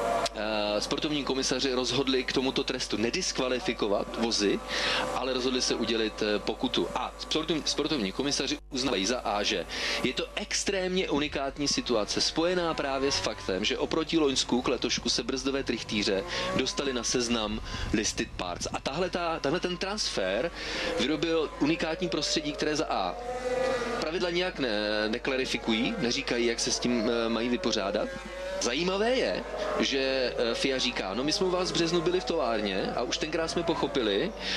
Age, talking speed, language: 30-49, 155 wpm, Czech